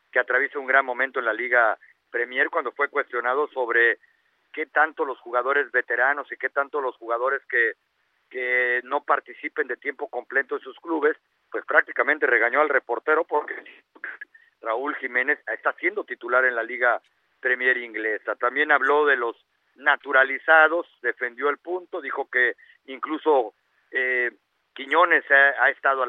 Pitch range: 135-210 Hz